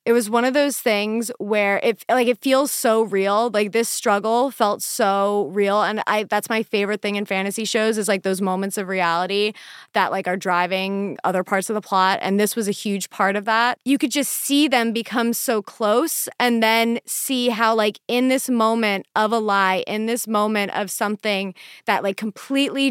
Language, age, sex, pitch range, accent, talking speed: English, 20-39, female, 205-250 Hz, American, 205 wpm